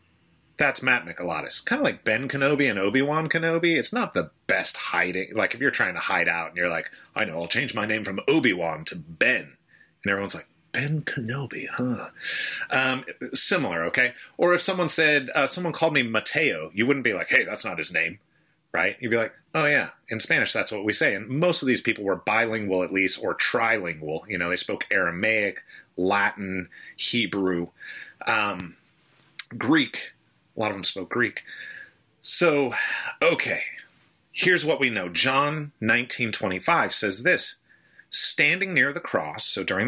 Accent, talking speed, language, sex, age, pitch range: American, 175 wpm, English, male, 30-49, 95-155 Hz